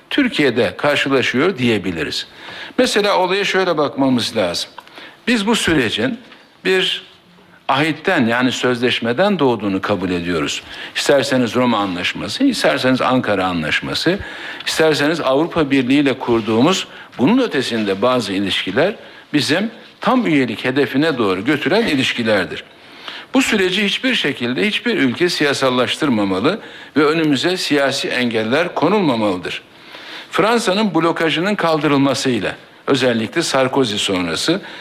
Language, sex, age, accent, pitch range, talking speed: Turkish, male, 60-79, native, 125-185 Hz, 100 wpm